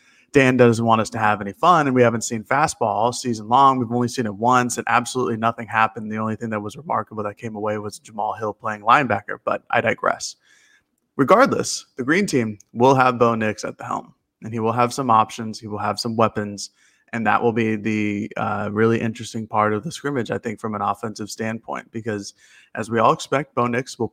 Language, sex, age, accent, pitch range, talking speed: English, male, 20-39, American, 105-120 Hz, 225 wpm